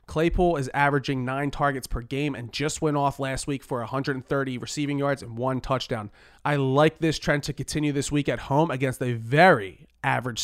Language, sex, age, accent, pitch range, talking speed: English, male, 30-49, American, 125-160 Hz, 195 wpm